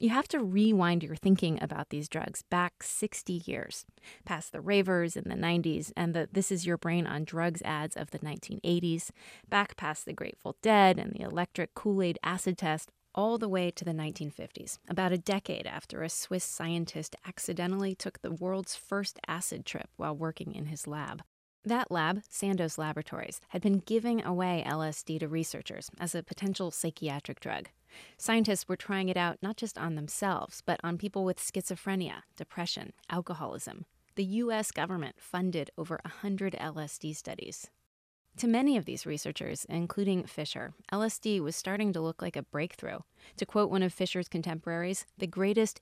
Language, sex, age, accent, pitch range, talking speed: English, female, 20-39, American, 160-200 Hz, 170 wpm